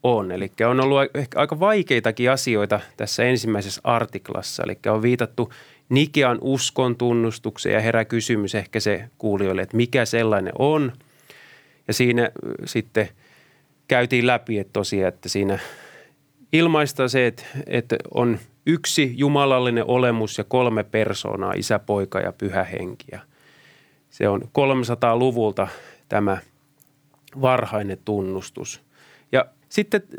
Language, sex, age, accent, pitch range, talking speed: Finnish, male, 30-49, native, 110-145 Hz, 115 wpm